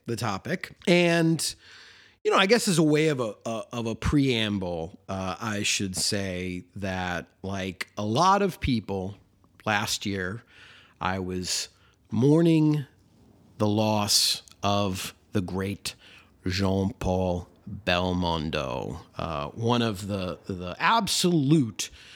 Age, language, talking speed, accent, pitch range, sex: 30-49, English, 120 wpm, American, 95-125 Hz, male